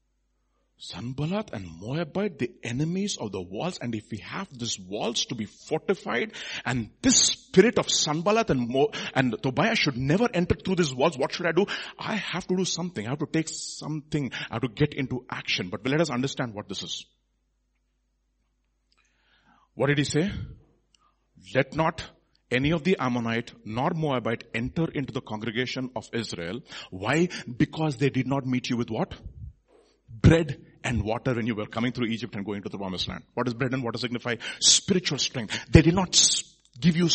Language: English